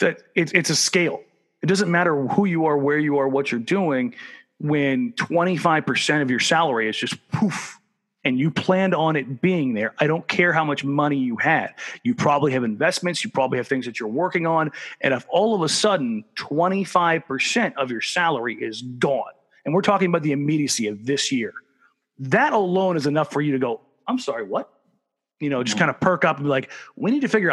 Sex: male